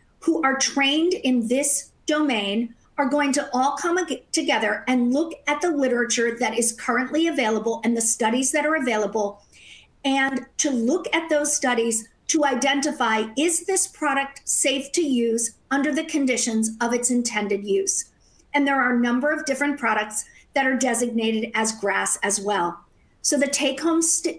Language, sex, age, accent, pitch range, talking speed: English, female, 50-69, American, 225-280 Hz, 160 wpm